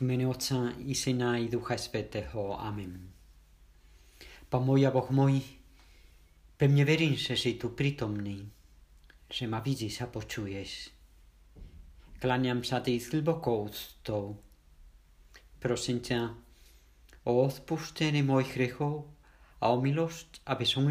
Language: Czech